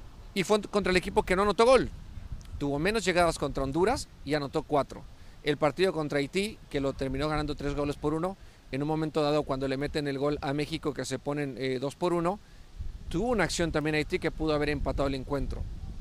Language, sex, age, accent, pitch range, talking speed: Spanish, male, 40-59, Mexican, 135-165 Hz, 215 wpm